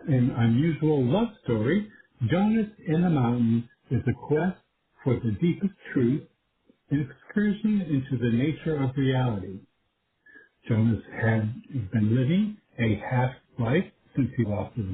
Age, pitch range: 60-79, 120-170 Hz